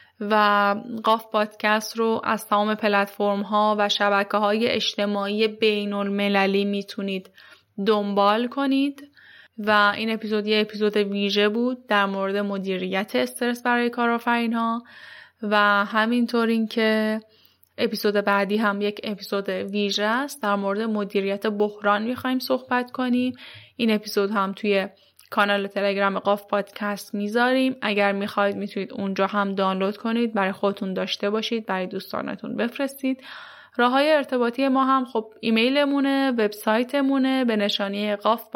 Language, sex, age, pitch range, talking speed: Persian, female, 10-29, 200-235 Hz, 130 wpm